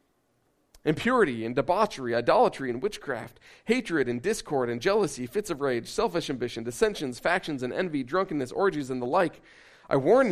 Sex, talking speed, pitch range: male, 155 wpm, 125-165 Hz